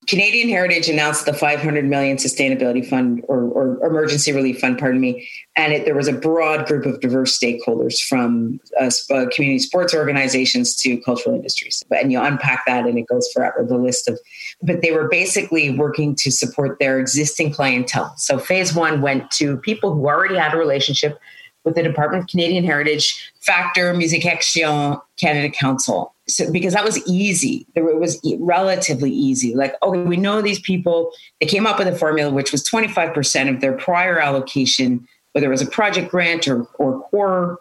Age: 30-49